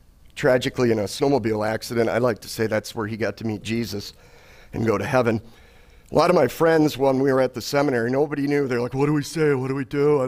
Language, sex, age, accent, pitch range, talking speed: English, male, 50-69, American, 115-155 Hz, 255 wpm